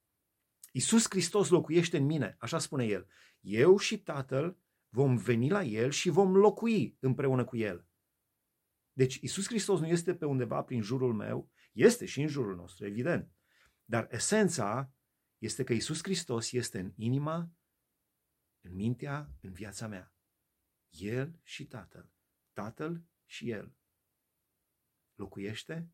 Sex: male